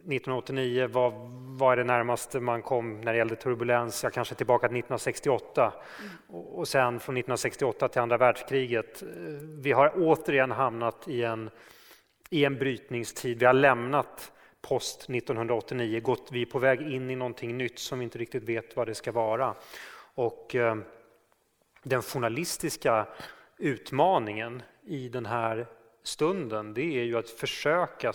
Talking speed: 150 wpm